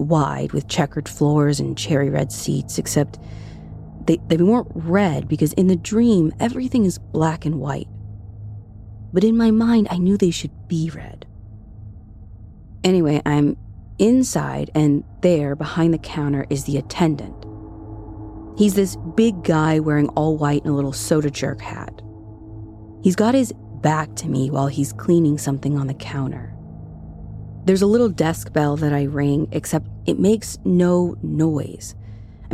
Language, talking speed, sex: English, 155 wpm, female